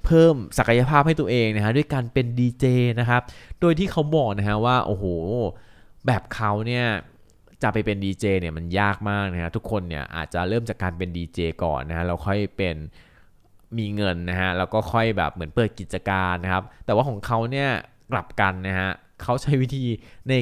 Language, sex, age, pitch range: Thai, male, 20-39, 90-120 Hz